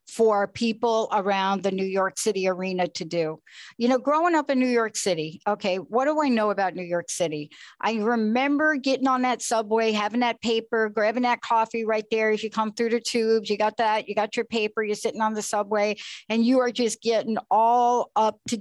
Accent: American